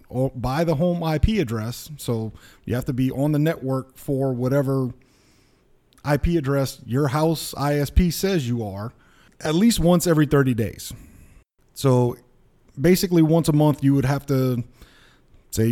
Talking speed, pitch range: 155 wpm, 125-155 Hz